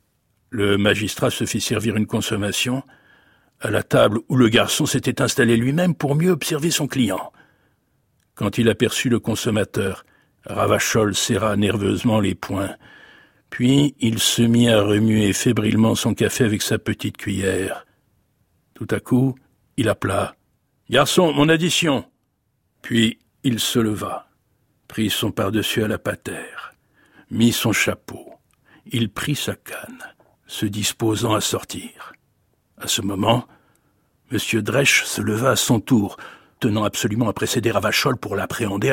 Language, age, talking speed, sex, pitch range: French, 60-79, 140 wpm, male, 105-125 Hz